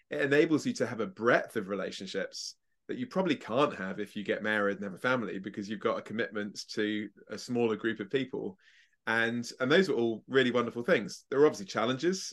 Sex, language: male, Slovak